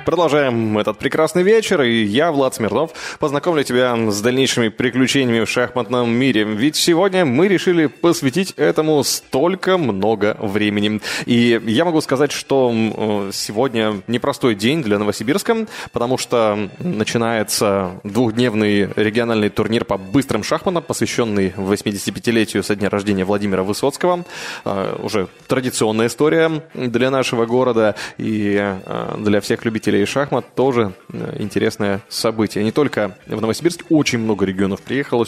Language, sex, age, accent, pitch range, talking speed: Russian, male, 20-39, native, 105-135 Hz, 125 wpm